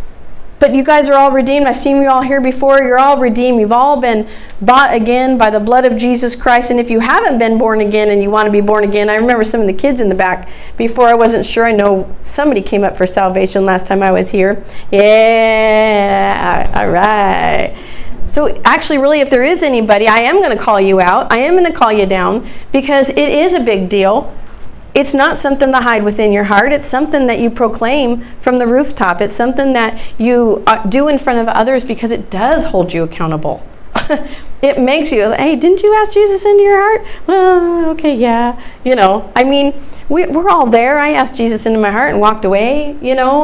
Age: 40-59